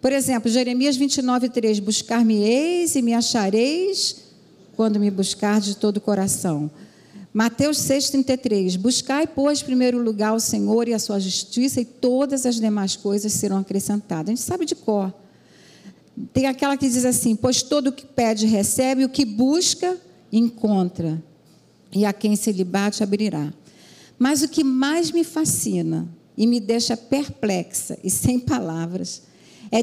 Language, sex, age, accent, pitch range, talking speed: Portuguese, female, 50-69, Brazilian, 200-260 Hz, 155 wpm